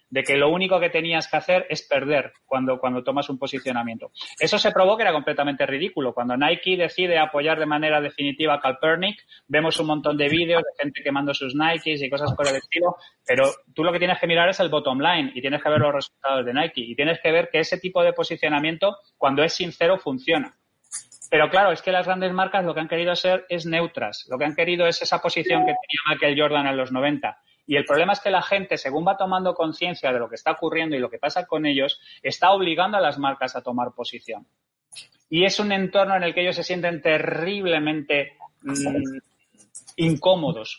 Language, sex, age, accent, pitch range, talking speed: Spanish, male, 30-49, Spanish, 145-175 Hz, 220 wpm